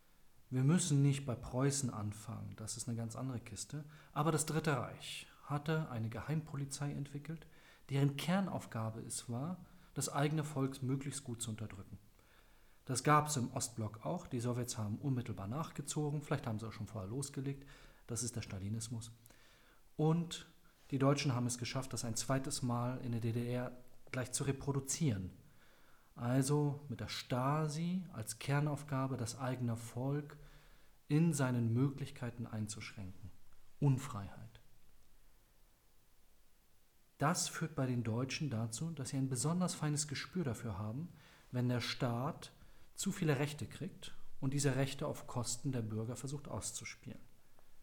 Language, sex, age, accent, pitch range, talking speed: German, male, 40-59, German, 115-145 Hz, 140 wpm